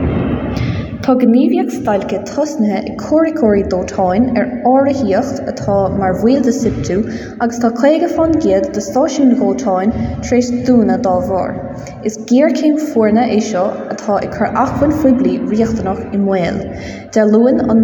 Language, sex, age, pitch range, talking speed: English, female, 20-39, 200-255 Hz, 90 wpm